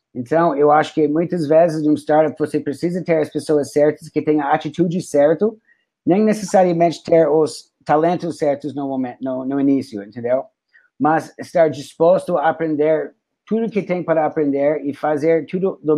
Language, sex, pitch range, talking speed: Portuguese, male, 145-165 Hz, 175 wpm